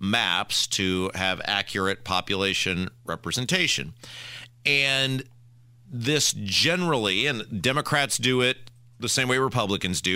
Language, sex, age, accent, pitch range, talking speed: English, male, 40-59, American, 100-130 Hz, 105 wpm